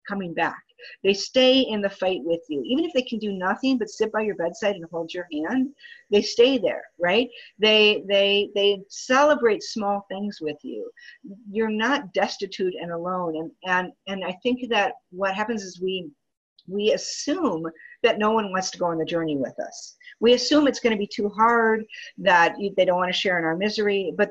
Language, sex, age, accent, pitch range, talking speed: English, female, 50-69, American, 185-260 Hz, 200 wpm